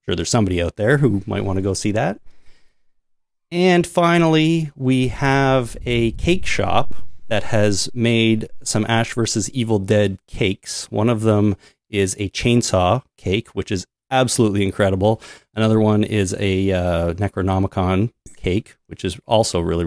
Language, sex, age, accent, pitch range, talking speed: English, male, 30-49, American, 95-120 Hz, 150 wpm